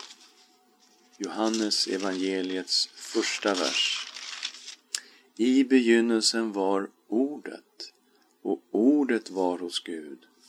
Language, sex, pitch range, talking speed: Swedish, male, 85-125 Hz, 75 wpm